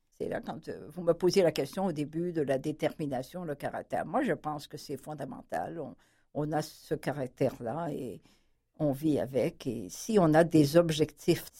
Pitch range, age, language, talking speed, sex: 150-195 Hz, 60-79, French, 190 wpm, female